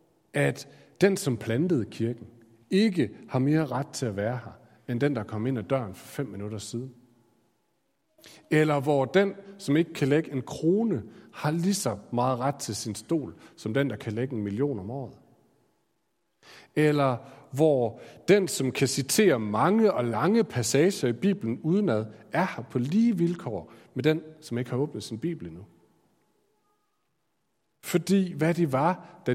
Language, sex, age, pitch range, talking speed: Danish, male, 40-59, 120-170 Hz, 170 wpm